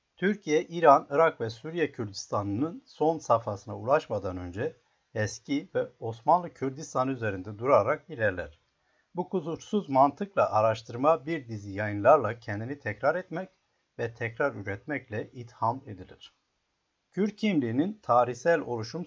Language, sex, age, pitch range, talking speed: Turkish, male, 60-79, 105-150 Hz, 115 wpm